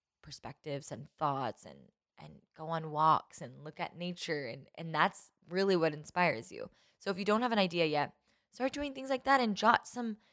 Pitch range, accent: 155-195 Hz, American